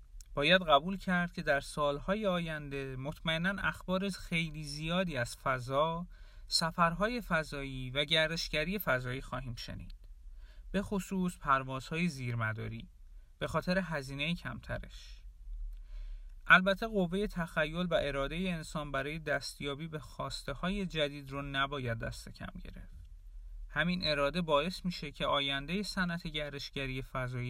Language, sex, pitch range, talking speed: Persian, male, 125-180 Hz, 120 wpm